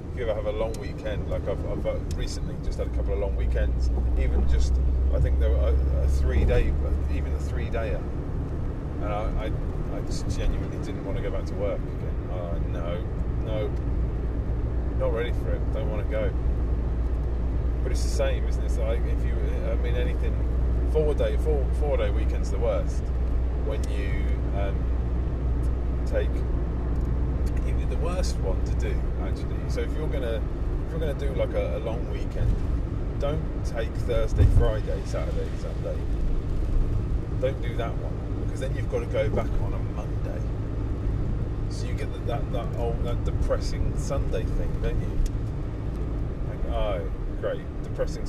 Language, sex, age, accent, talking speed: English, male, 30-49, British, 170 wpm